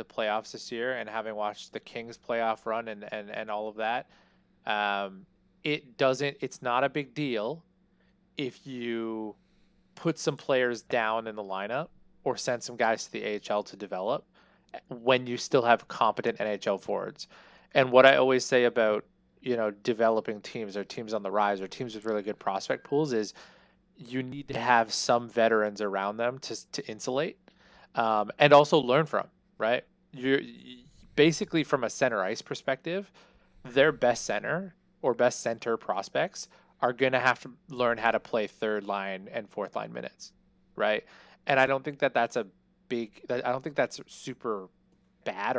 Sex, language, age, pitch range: male, English, 20-39, 105-135 Hz